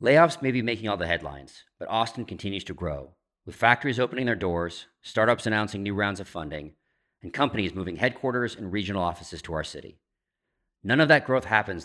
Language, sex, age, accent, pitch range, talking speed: English, male, 40-59, American, 85-115 Hz, 190 wpm